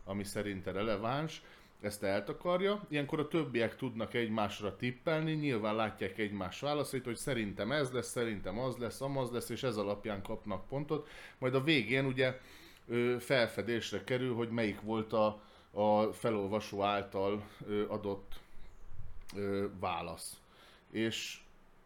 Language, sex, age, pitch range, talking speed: Hungarian, male, 30-49, 105-130 Hz, 125 wpm